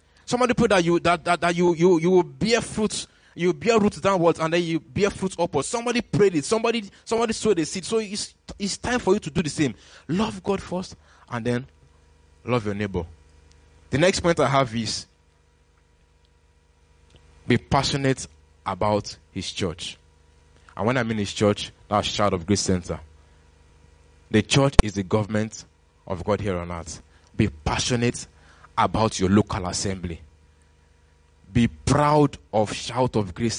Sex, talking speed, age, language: male, 170 wpm, 20-39, English